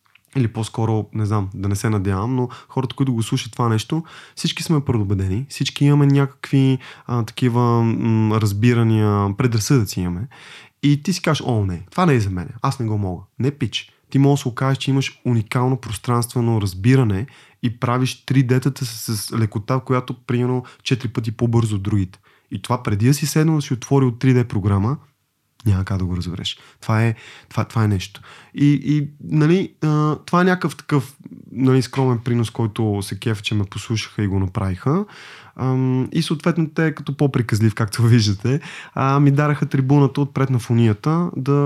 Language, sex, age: Bulgarian, male, 20-39